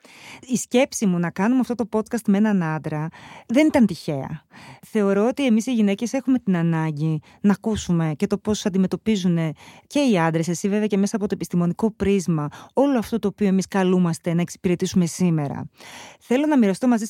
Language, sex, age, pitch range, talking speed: Greek, female, 30-49, 185-240 Hz, 185 wpm